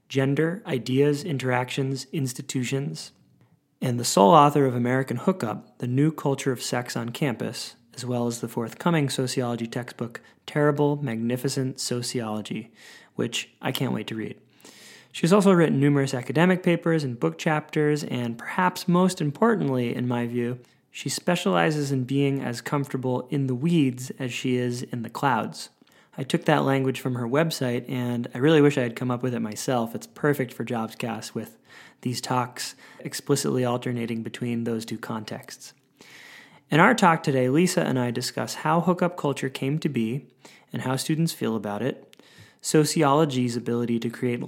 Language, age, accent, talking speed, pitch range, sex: English, 20-39, American, 160 wpm, 120-150 Hz, male